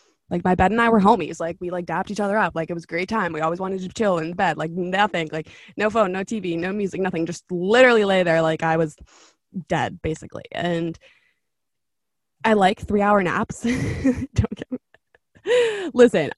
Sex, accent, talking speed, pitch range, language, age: female, American, 200 wpm, 170-210 Hz, English, 20-39